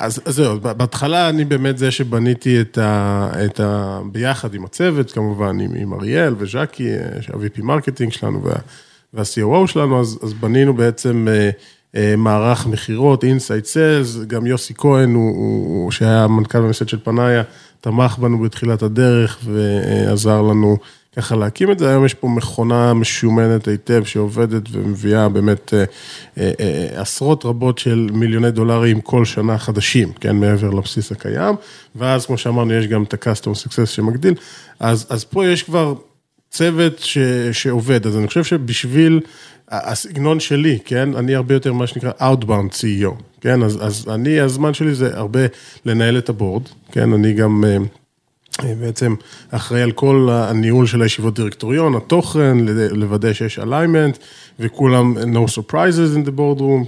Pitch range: 110-135 Hz